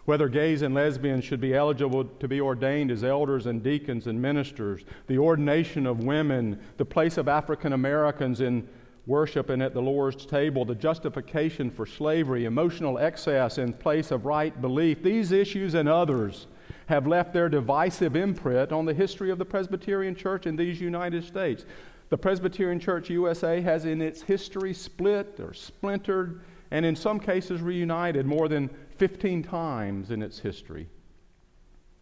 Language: English